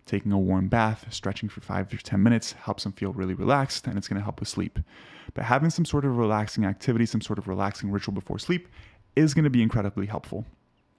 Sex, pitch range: male, 105-130 Hz